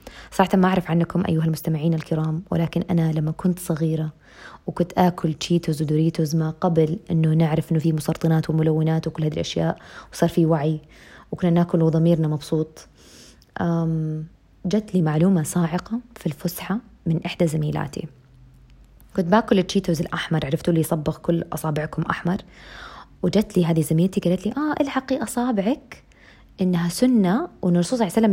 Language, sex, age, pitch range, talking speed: Arabic, female, 20-39, 160-200 Hz, 140 wpm